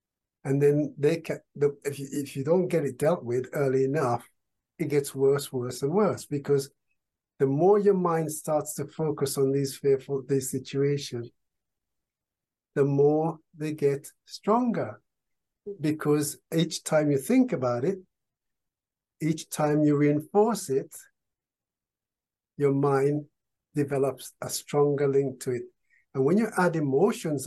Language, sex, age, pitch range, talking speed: English, male, 60-79, 135-160 Hz, 140 wpm